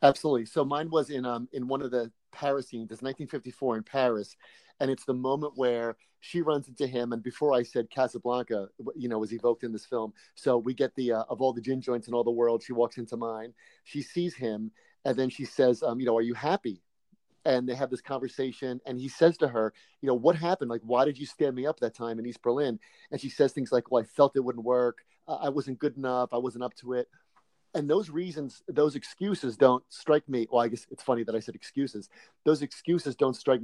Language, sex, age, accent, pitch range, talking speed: English, male, 30-49, American, 120-140 Hz, 240 wpm